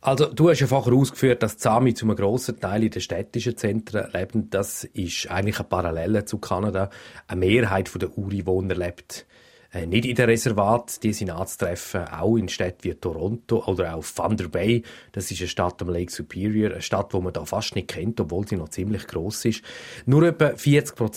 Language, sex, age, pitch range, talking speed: German, male, 30-49, 95-120 Hz, 195 wpm